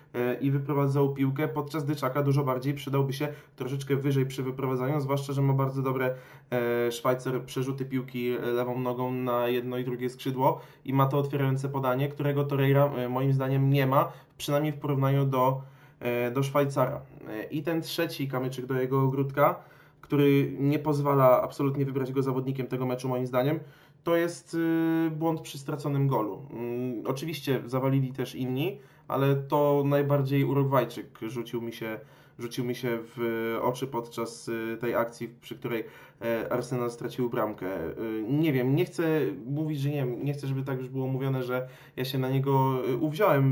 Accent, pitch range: native, 125-145 Hz